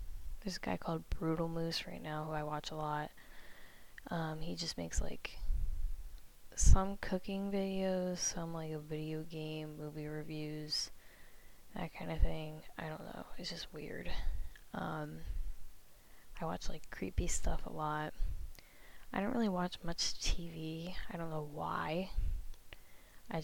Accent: American